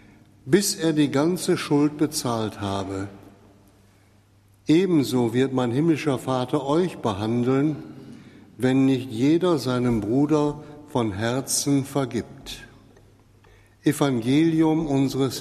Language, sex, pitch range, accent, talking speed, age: German, male, 115-150 Hz, German, 95 wpm, 60-79